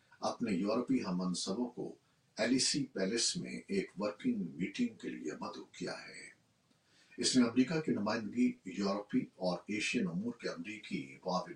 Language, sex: Urdu, male